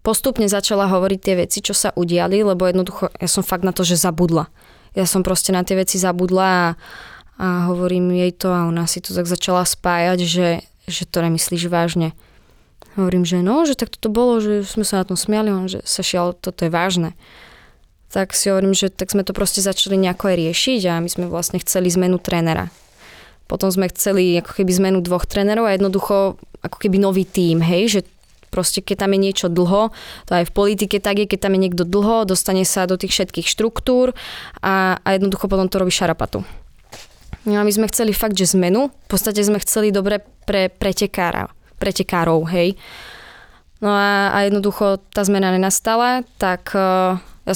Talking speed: 190 wpm